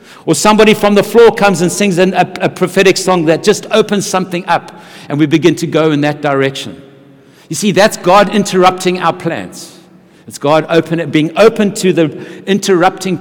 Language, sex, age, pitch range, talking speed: English, male, 60-79, 140-190 Hz, 175 wpm